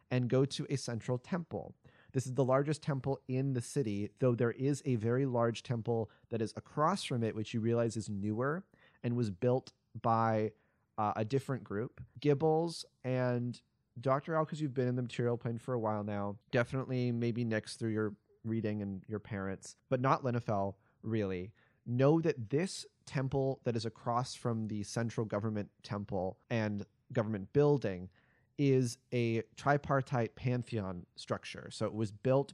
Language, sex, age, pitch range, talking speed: English, male, 30-49, 110-130 Hz, 170 wpm